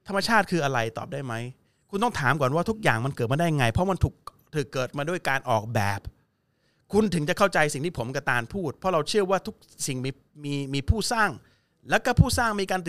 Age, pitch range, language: 30-49, 125-170 Hz, Thai